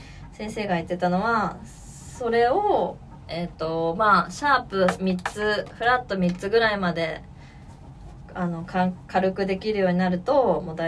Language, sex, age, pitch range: Japanese, female, 20-39, 165-220 Hz